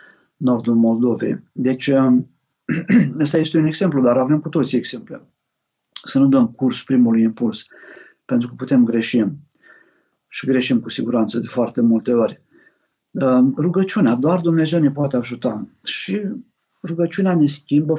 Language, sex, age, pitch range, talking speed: Romanian, male, 50-69, 130-175 Hz, 135 wpm